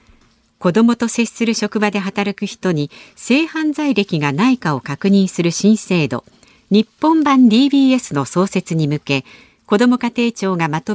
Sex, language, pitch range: female, Japanese, 165-240 Hz